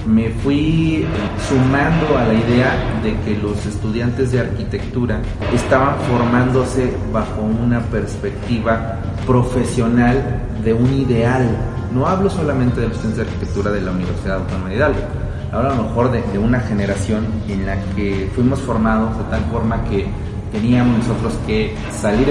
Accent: Mexican